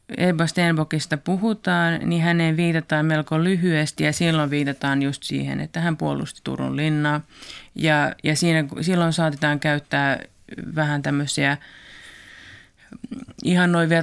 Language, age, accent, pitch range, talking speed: Finnish, 30-49, native, 150-170 Hz, 115 wpm